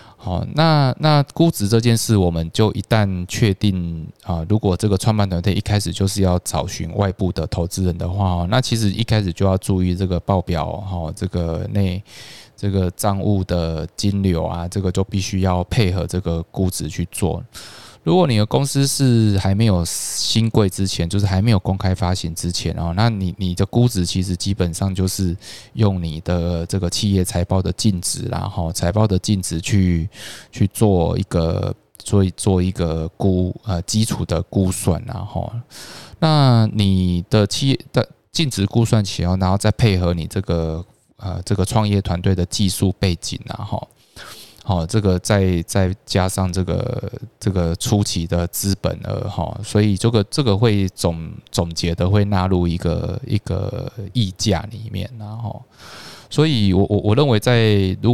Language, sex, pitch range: Chinese, male, 90-110 Hz